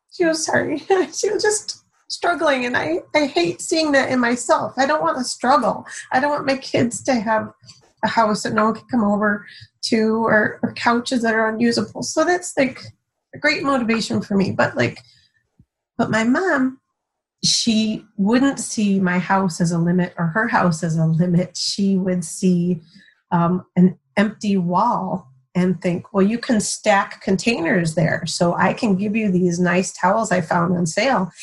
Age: 30-49